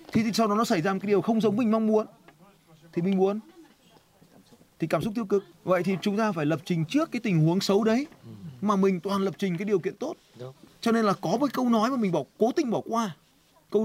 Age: 20-39